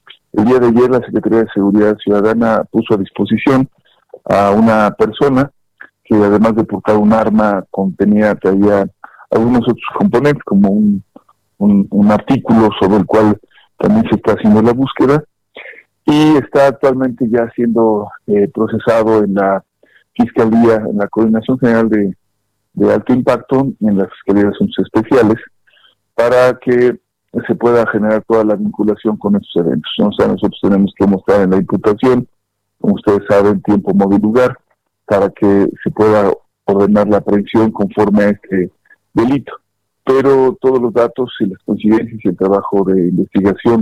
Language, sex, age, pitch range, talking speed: Spanish, male, 50-69, 100-120 Hz, 155 wpm